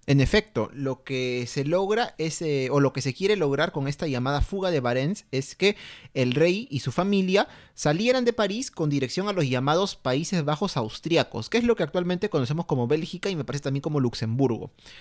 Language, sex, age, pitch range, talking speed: Spanish, male, 30-49, 130-185 Hz, 210 wpm